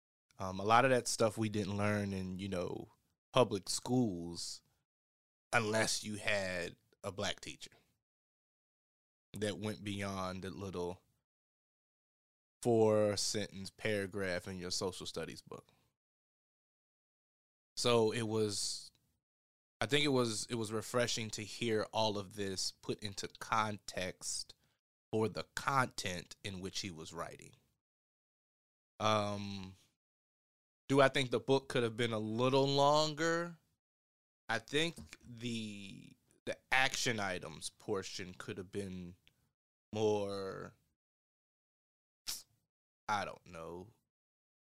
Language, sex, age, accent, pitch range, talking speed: English, male, 20-39, American, 95-115 Hz, 115 wpm